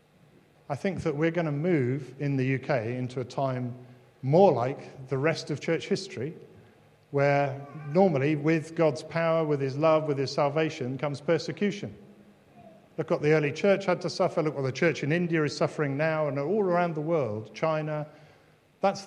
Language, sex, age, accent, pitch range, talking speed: English, male, 50-69, British, 125-155 Hz, 180 wpm